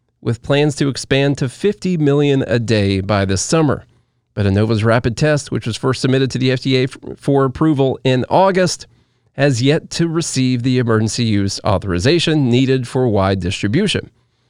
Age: 30-49